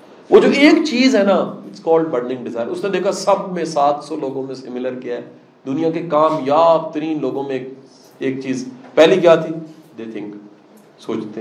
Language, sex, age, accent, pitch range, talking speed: English, male, 40-59, Indian, 130-190 Hz, 185 wpm